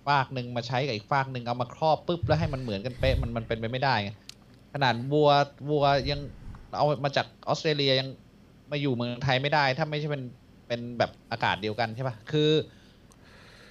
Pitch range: 115-150 Hz